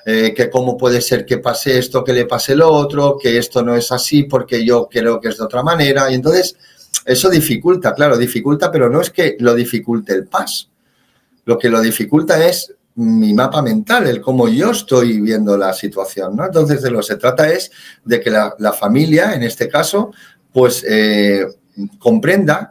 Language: Spanish